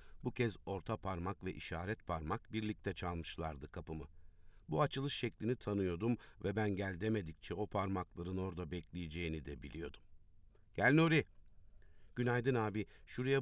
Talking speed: 130 wpm